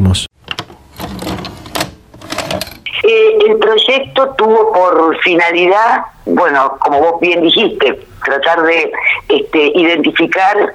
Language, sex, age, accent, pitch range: Spanish, female, 50-69, Argentinian, 150-225 Hz